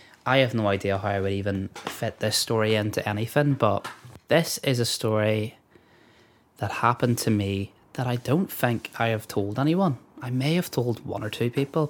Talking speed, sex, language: 190 wpm, male, English